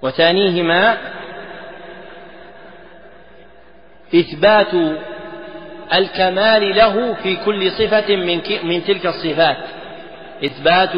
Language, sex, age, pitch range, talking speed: Arabic, male, 40-59, 160-190 Hz, 65 wpm